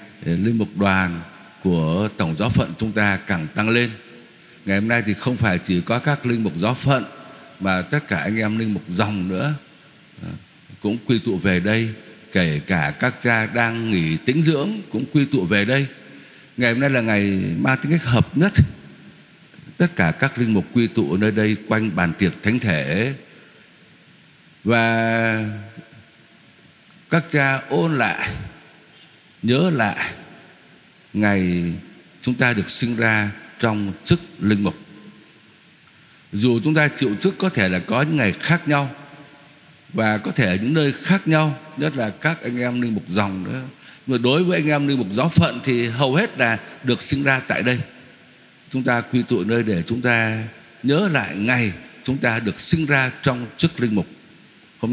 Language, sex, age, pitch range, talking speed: Vietnamese, male, 60-79, 105-140 Hz, 175 wpm